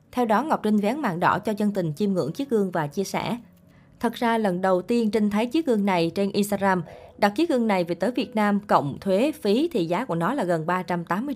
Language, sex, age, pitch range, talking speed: Vietnamese, female, 20-39, 170-215 Hz, 250 wpm